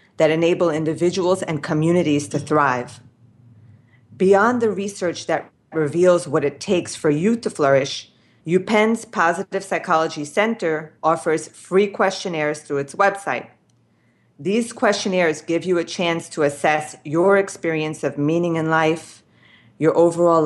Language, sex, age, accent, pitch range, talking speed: English, female, 40-59, American, 145-180 Hz, 130 wpm